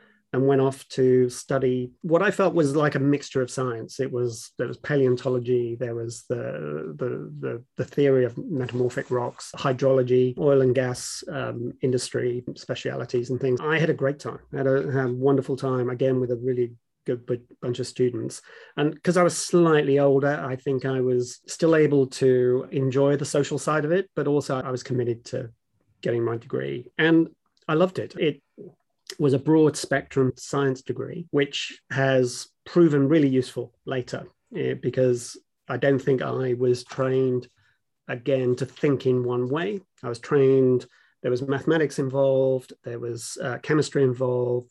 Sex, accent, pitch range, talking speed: male, British, 125-145 Hz, 170 wpm